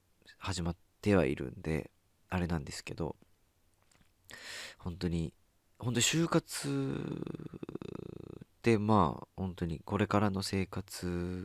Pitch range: 85-110 Hz